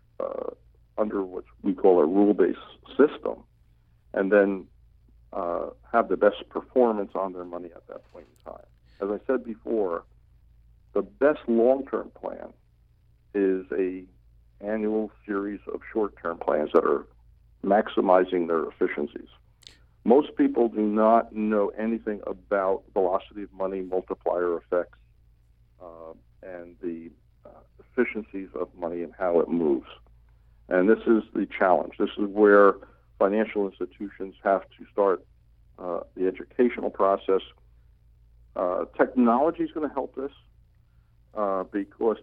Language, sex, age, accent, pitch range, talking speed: English, male, 60-79, American, 90-115 Hz, 130 wpm